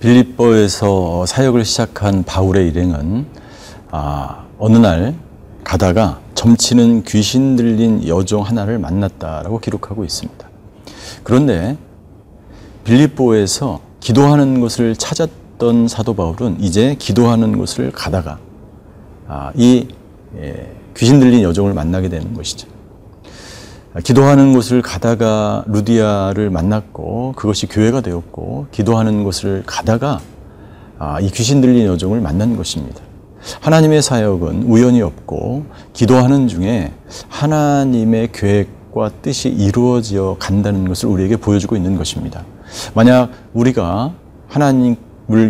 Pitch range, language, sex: 95-120 Hz, Korean, male